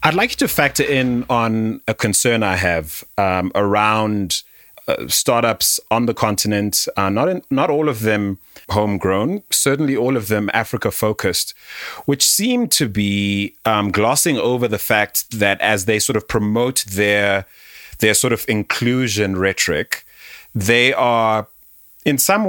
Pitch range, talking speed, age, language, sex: 105-135 Hz, 150 wpm, 30-49, English, male